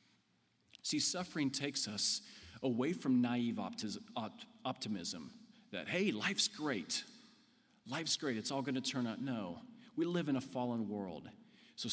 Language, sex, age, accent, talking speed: English, male, 40-59, American, 140 wpm